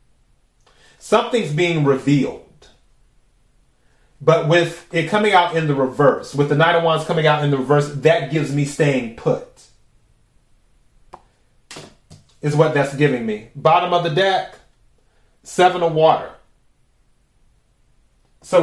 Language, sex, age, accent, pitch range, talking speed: English, male, 30-49, American, 140-180 Hz, 125 wpm